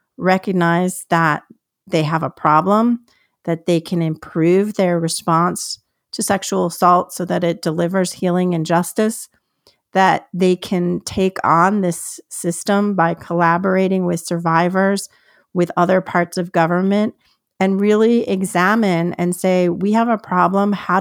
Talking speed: 135 wpm